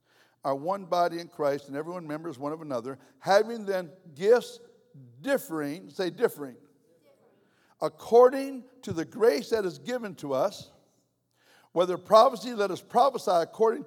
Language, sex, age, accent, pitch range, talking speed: English, male, 60-79, American, 160-225 Hz, 145 wpm